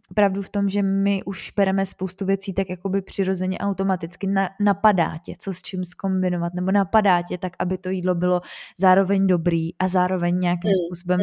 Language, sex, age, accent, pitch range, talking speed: Czech, female, 20-39, native, 180-200 Hz, 170 wpm